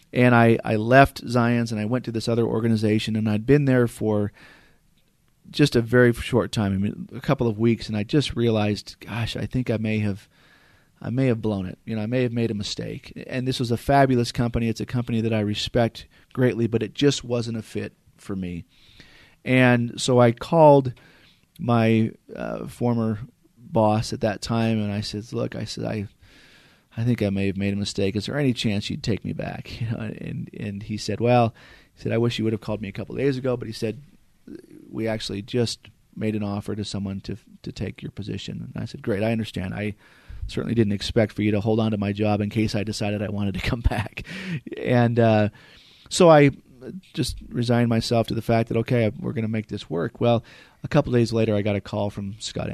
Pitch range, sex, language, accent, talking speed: 105-120 Hz, male, English, American, 225 wpm